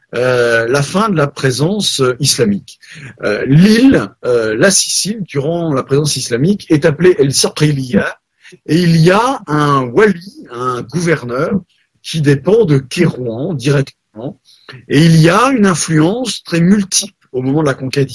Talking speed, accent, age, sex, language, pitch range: 150 wpm, French, 50-69, male, French, 140-210 Hz